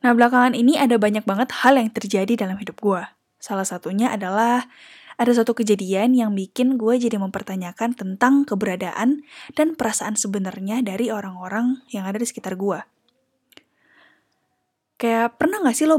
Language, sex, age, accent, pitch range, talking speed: Indonesian, female, 10-29, native, 205-255 Hz, 150 wpm